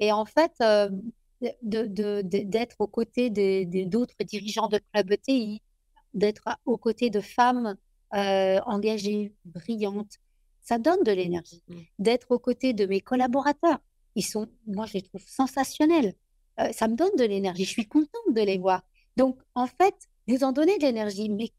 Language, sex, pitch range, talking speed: French, female, 200-265 Hz, 175 wpm